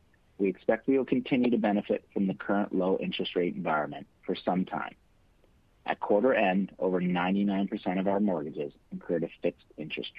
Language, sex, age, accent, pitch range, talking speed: English, male, 50-69, American, 90-110 Hz, 165 wpm